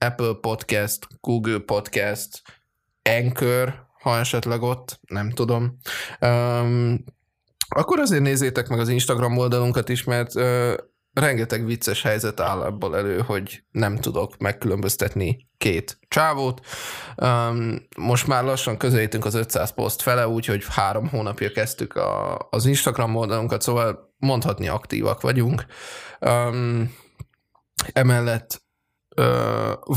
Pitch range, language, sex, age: 110-130 Hz, Hungarian, male, 20-39